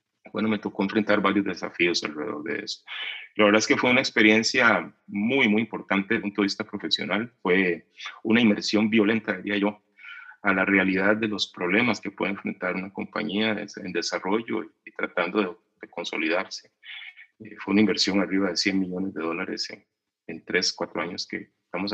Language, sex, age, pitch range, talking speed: Spanish, male, 30-49, 95-105 Hz, 180 wpm